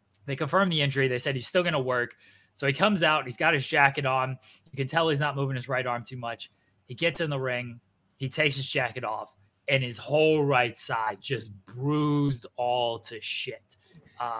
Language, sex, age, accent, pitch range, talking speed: English, male, 20-39, American, 125-155 Hz, 215 wpm